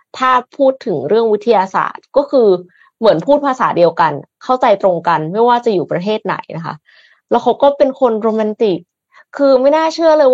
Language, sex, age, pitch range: Thai, female, 20-39, 180-255 Hz